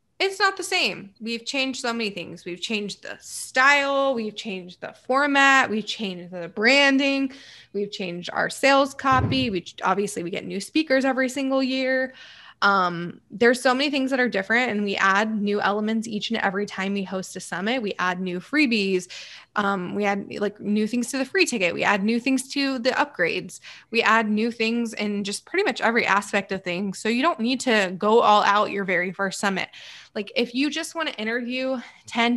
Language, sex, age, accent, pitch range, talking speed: English, female, 20-39, American, 195-260 Hz, 200 wpm